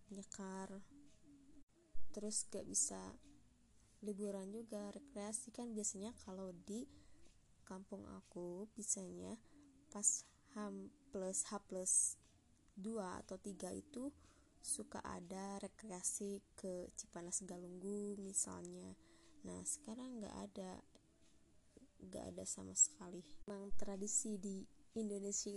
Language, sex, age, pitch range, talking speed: Indonesian, female, 20-39, 185-230 Hz, 100 wpm